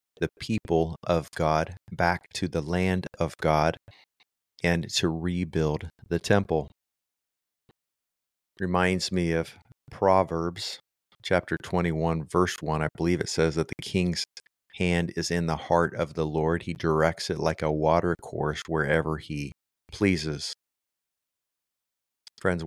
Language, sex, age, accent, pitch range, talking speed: English, male, 30-49, American, 80-90 Hz, 130 wpm